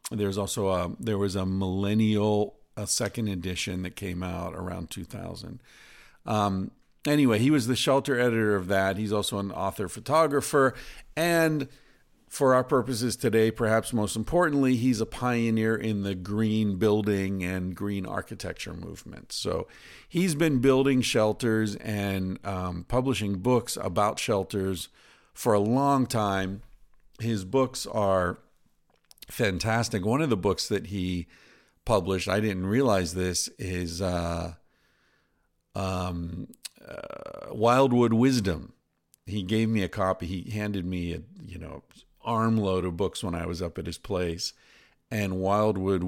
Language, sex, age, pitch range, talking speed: English, male, 50-69, 90-115 Hz, 140 wpm